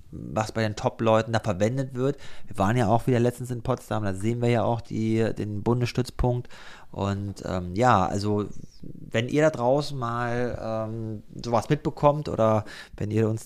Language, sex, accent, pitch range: German, male, German, 100-115 Hz